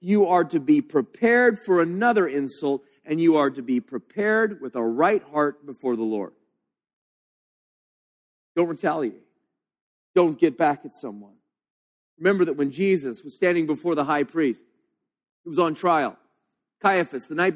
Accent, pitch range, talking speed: American, 165-270 Hz, 155 wpm